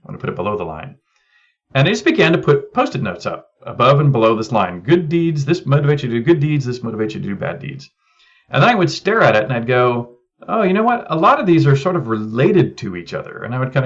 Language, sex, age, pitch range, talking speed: English, male, 40-59, 115-145 Hz, 290 wpm